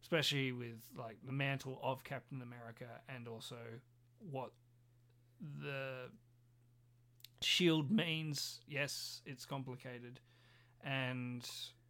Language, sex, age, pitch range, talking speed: English, male, 40-59, 120-135 Hz, 90 wpm